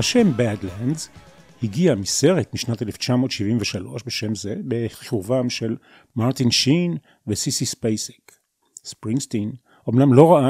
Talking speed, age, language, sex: 105 wpm, 40-59, Hebrew, male